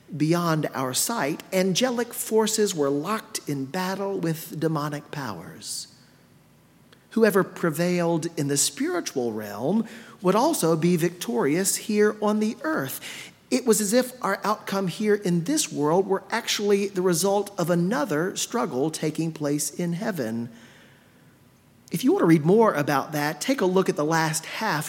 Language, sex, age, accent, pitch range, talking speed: English, male, 40-59, American, 155-210 Hz, 150 wpm